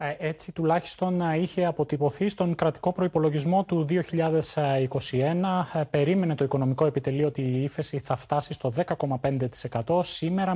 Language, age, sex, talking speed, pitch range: Greek, 30-49, male, 120 wpm, 140-180 Hz